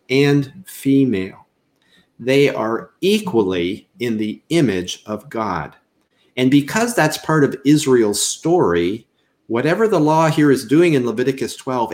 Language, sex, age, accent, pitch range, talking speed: English, male, 50-69, American, 105-140 Hz, 130 wpm